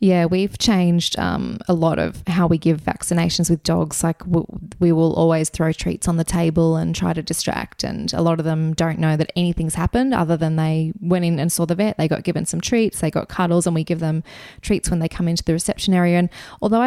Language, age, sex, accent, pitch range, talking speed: English, 20-39, female, Australian, 165-180 Hz, 240 wpm